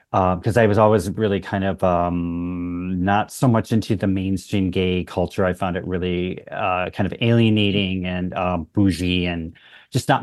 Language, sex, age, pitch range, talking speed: English, male, 30-49, 95-115 Hz, 180 wpm